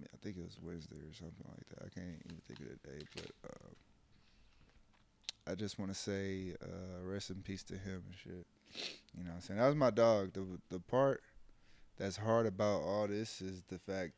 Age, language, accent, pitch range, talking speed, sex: 20-39, English, American, 95-110 Hz, 215 wpm, male